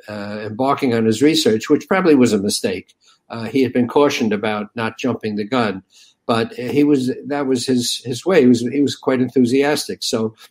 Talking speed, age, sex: 200 wpm, 60-79, male